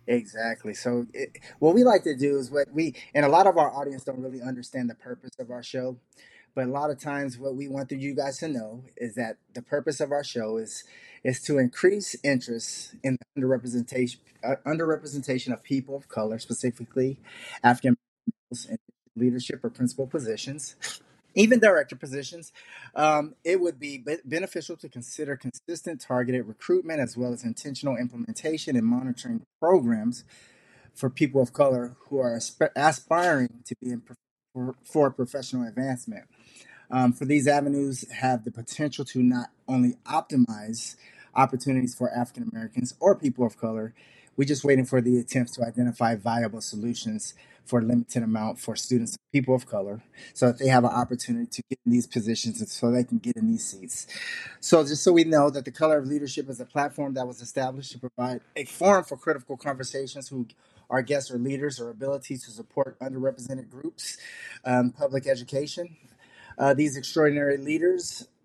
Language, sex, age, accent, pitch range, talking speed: English, male, 20-39, American, 125-150 Hz, 170 wpm